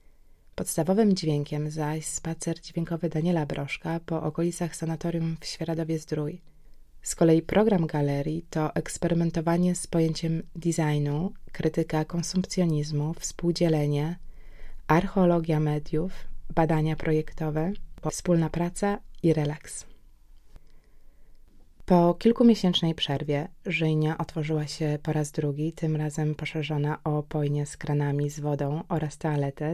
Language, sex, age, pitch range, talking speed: Polish, female, 20-39, 150-170 Hz, 105 wpm